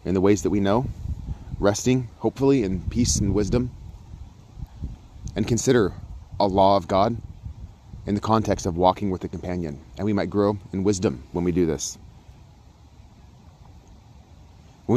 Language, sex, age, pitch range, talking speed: English, male, 30-49, 90-110 Hz, 150 wpm